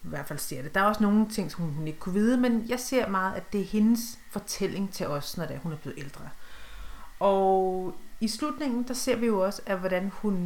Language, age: Danish, 40-59